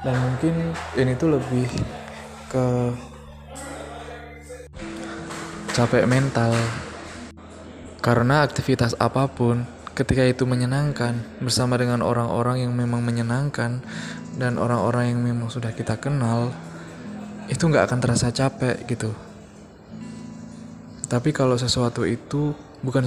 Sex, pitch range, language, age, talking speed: male, 115-130 Hz, Indonesian, 20-39, 100 wpm